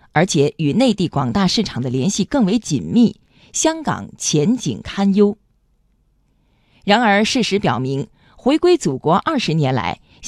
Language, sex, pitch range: Chinese, female, 150-230 Hz